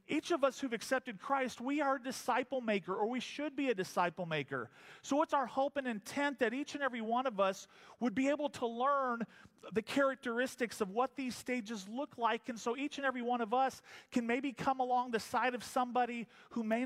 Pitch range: 200-255 Hz